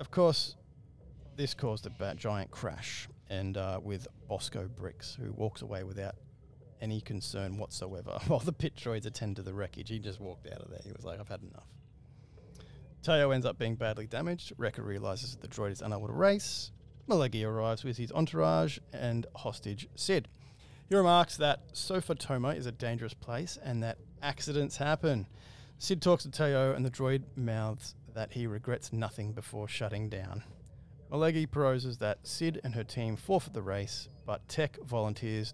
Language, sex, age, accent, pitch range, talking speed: English, male, 30-49, Australian, 105-135 Hz, 175 wpm